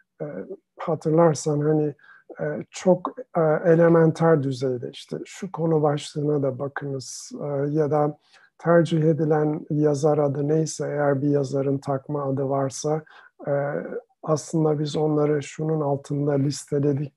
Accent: native